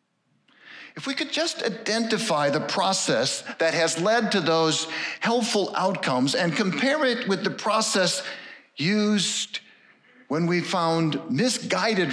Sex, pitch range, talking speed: male, 160-225 Hz, 125 wpm